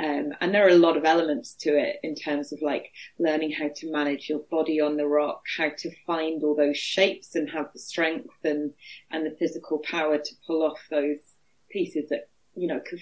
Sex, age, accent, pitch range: female, 30-49, British, 150-180 Hz